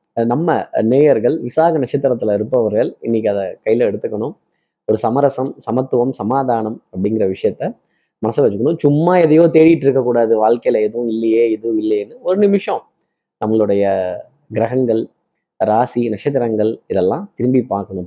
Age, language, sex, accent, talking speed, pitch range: 20-39, Tamil, male, native, 120 wpm, 115-165 Hz